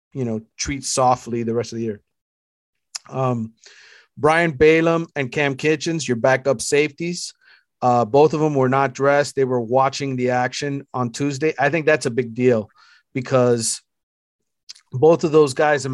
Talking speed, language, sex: 165 wpm, English, male